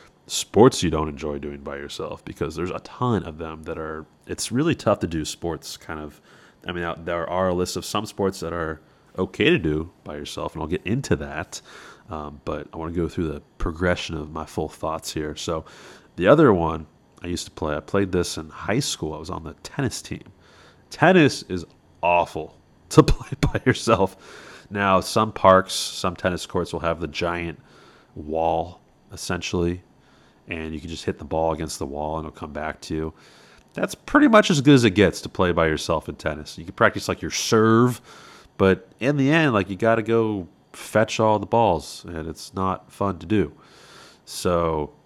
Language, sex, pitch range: English, male, 80-100 Hz